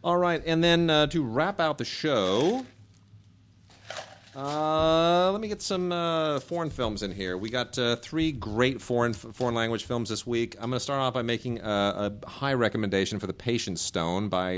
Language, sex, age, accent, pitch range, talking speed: English, male, 40-59, American, 100-125 Hz, 195 wpm